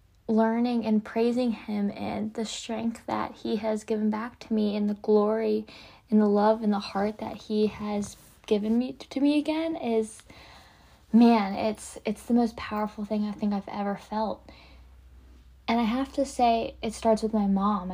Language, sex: English, female